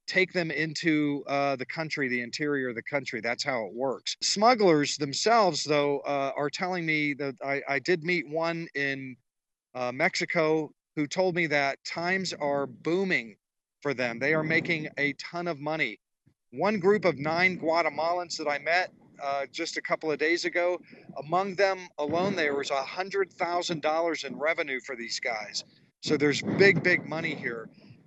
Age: 40-59